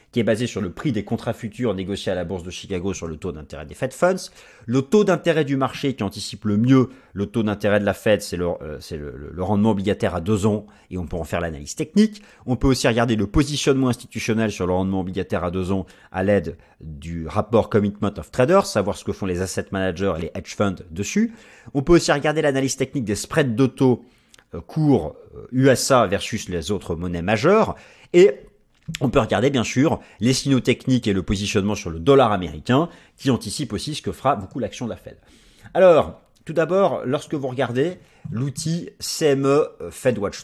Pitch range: 100-145 Hz